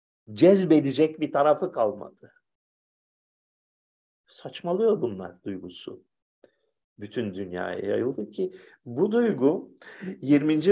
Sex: male